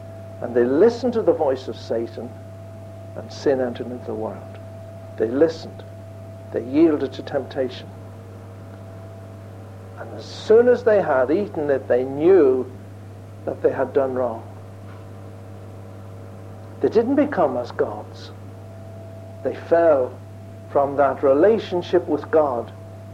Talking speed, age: 120 wpm, 60-79